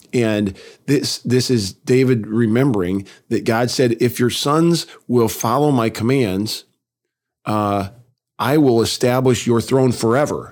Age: 40-59